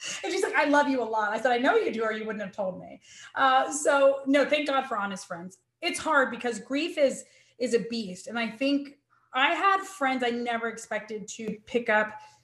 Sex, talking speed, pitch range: female, 230 wpm, 215-275 Hz